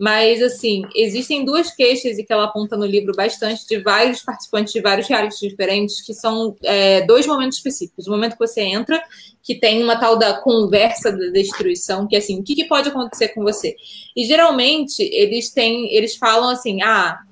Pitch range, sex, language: 210-275 Hz, female, Portuguese